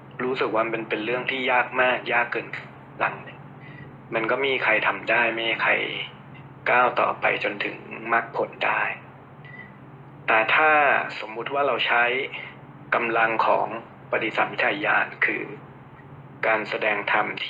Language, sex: Thai, male